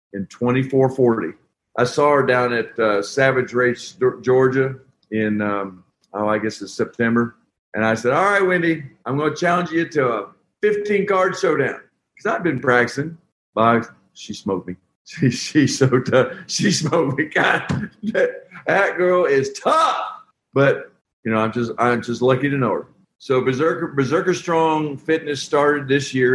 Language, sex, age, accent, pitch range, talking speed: English, male, 50-69, American, 110-145 Hz, 170 wpm